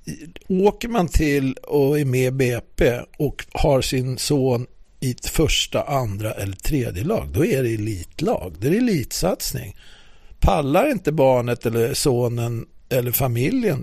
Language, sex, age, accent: English, male, 50-69, Swedish